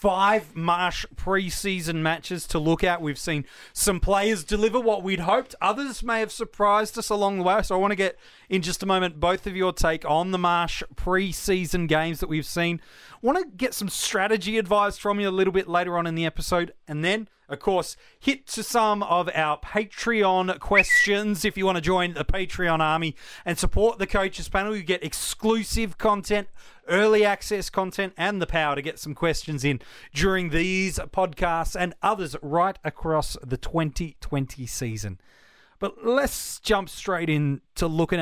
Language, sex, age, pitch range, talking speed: English, male, 30-49, 165-210 Hz, 180 wpm